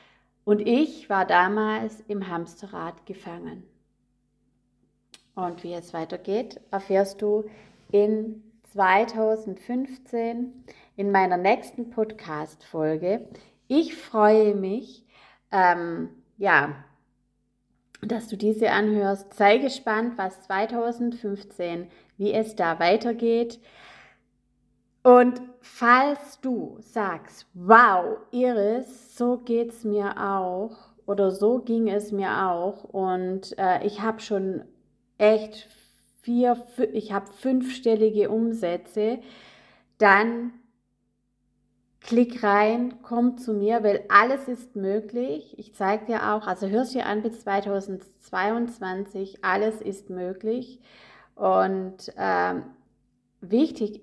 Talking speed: 100 wpm